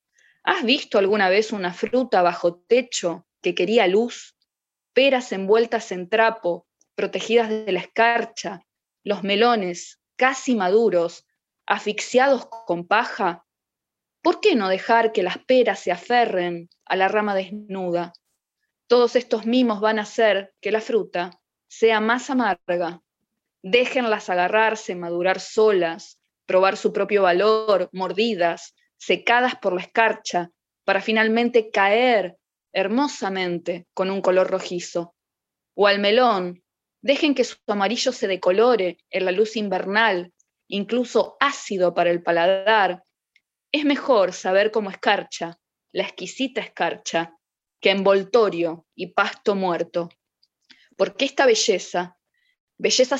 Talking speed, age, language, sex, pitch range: 120 wpm, 20-39, Spanish, female, 180-230 Hz